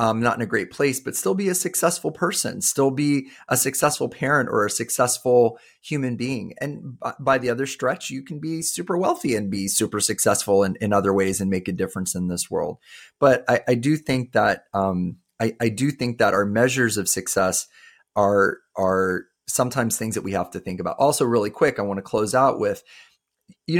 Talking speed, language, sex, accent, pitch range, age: 210 wpm, English, male, American, 100-130 Hz, 30-49